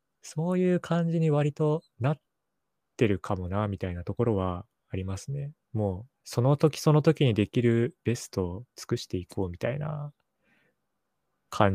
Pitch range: 100-140 Hz